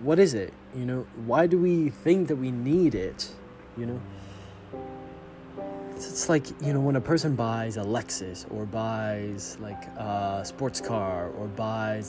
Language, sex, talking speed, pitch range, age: English, male, 165 wpm, 100-130 Hz, 20-39